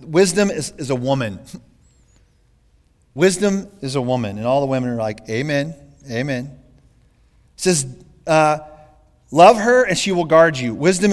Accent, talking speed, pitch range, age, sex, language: American, 150 wpm, 130-200 Hz, 40-59, male, English